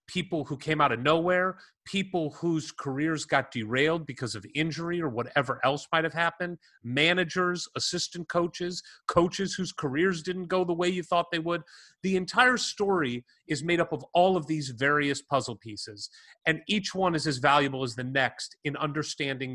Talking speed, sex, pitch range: 180 wpm, male, 130-175 Hz